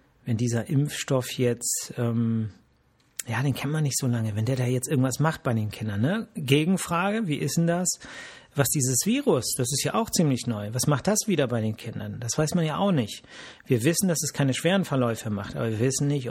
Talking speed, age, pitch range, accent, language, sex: 225 wpm, 40-59, 120-145 Hz, German, German, male